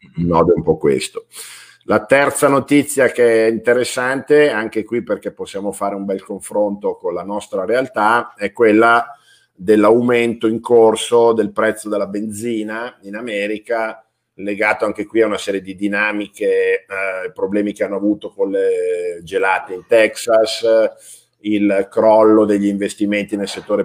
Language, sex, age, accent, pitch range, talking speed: Italian, male, 50-69, native, 100-120 Hz, 140 wpm